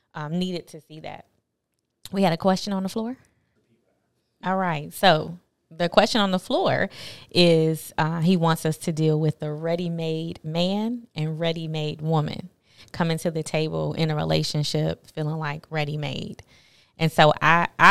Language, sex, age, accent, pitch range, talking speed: English, female, 20-39, American, 150-175 Hz, 160 wpm